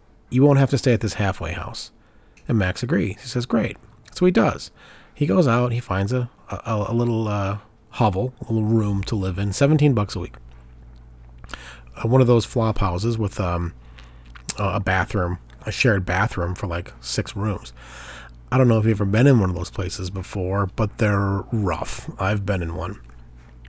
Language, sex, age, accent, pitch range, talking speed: English, male, 30-49, American, 90-120 Hz, 190 wpm